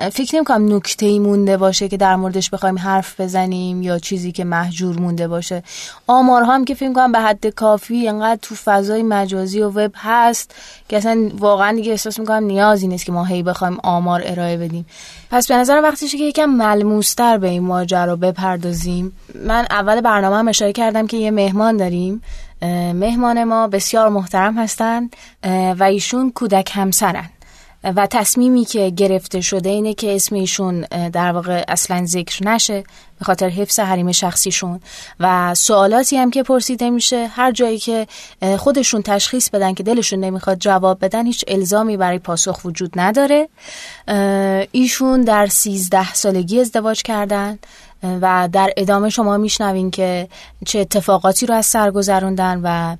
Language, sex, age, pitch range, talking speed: Persian, female, 20-39, 185-225 Hz, 155 wpm